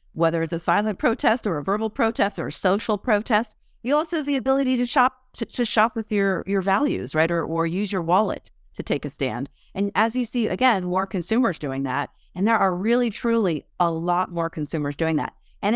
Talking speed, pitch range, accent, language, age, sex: 220 wpm, 165-220 Hz, American, English, 30-49, female